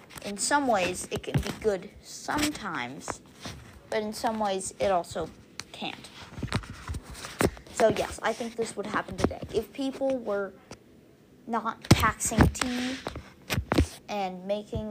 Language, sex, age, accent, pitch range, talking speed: English, female, 20-39, American, 205-265 Hz, 125 wpm